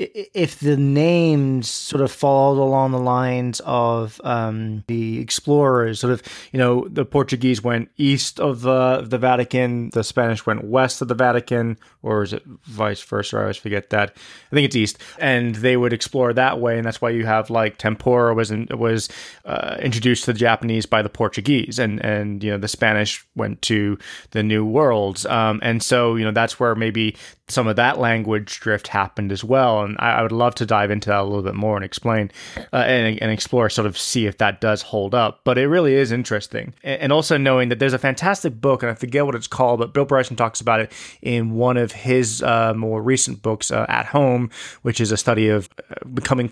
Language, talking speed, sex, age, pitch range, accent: English, 215 wpm, male, 20-39, 110-130 Hz, American